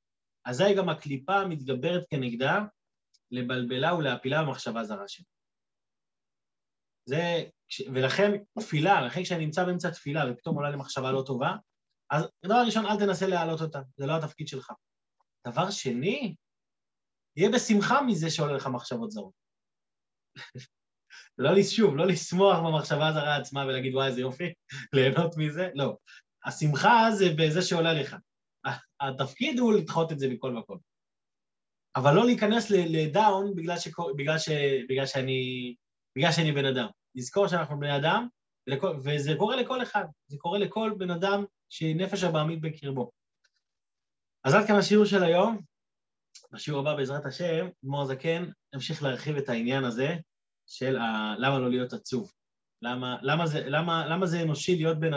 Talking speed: 140 wpm